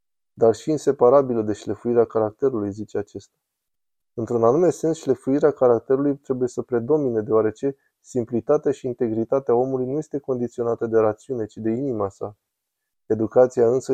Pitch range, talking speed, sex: 115-135 Hz, 140 wpm, male